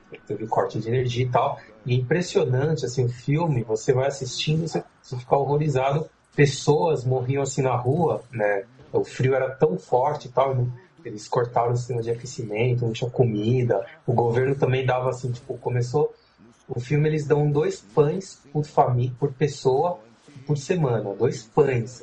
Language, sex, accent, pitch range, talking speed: Portuguese, male, Brazilian, 125-165 Hz, 165 wpm